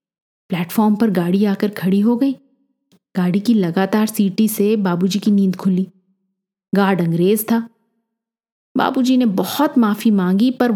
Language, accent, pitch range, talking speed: Hindi, native, 190-225 Hz, 140 wpm